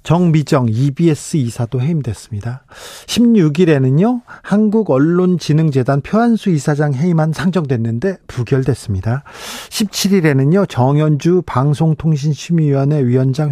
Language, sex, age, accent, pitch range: Korean, male, 40-59, native, 130-185 Hz